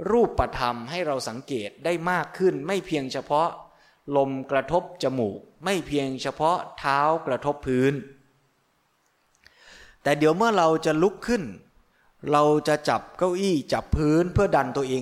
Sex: male